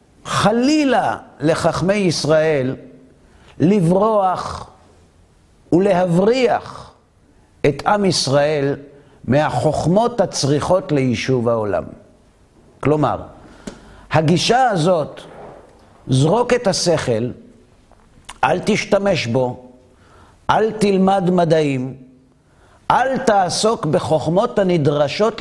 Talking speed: 65 wpm